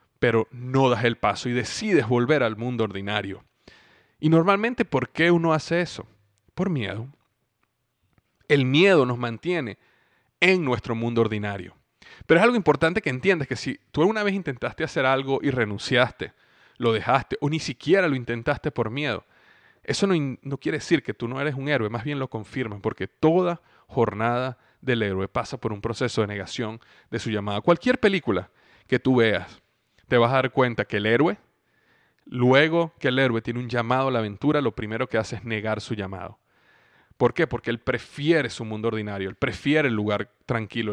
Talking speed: 185 wpm